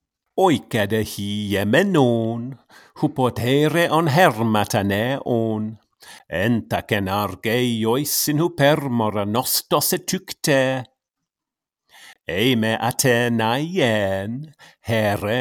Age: 50-69